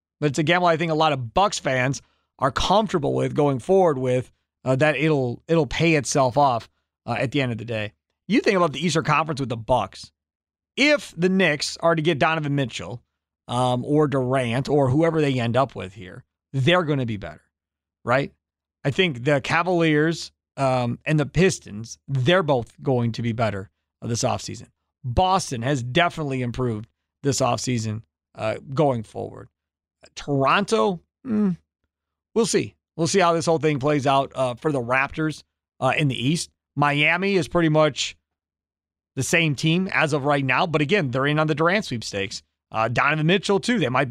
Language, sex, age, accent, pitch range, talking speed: English, male, 40-59, American, 115-165 Hz, 180 wpm